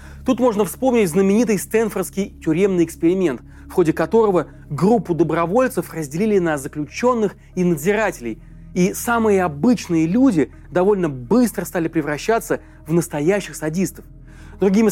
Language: Russian